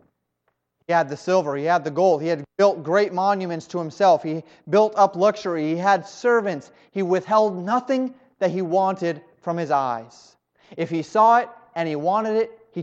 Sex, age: male, 30-49